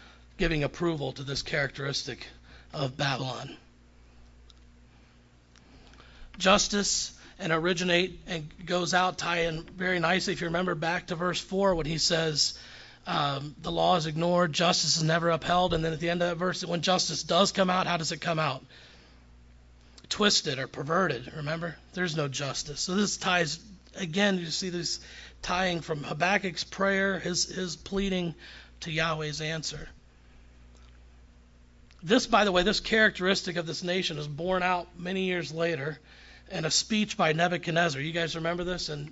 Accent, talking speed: American, 160 wpm